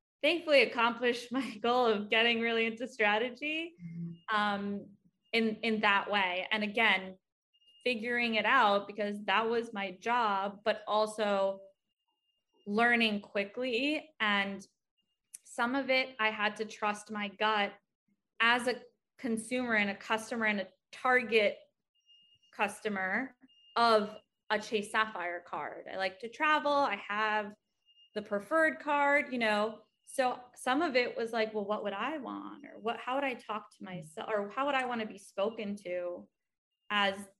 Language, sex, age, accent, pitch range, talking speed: English, female, 20-39, American, 205-245 Hz, 150 wpm